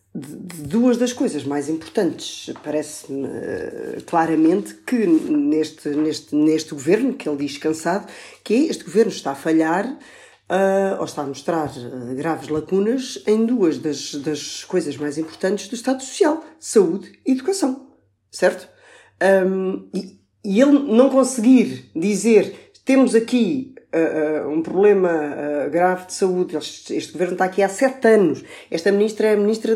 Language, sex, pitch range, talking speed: Portuguese, female, 150-205 Hz, 135 wpm